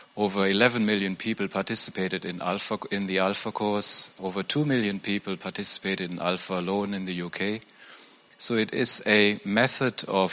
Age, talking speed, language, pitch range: 40-59, 155 wpm, English, 95-110 Hz